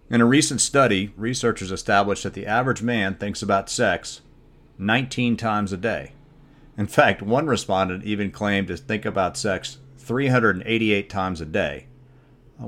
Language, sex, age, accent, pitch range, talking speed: English, male, 40-59, American, 90-120 Hz, 150 wpm